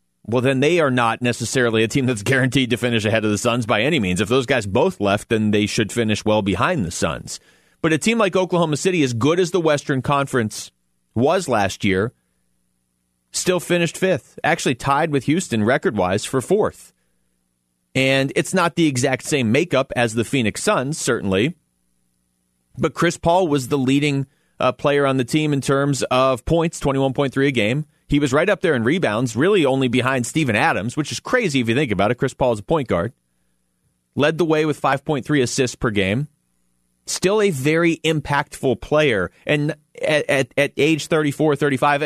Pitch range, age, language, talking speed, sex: 110-155 Hz, 30-49, English, 190 wpm, male